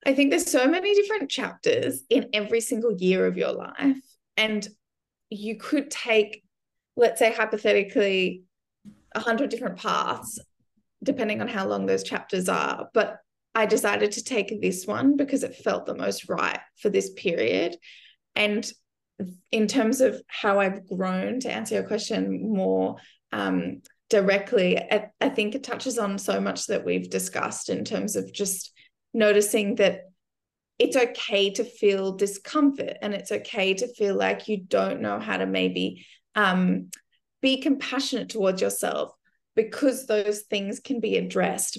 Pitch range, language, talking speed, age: 190-245 Hz, English, 155 wpm, 20-39